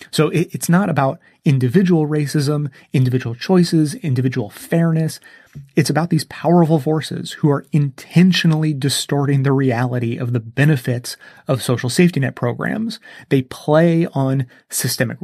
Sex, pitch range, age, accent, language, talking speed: male, 130-165 Hz, 30-49, American, English, 130 wpm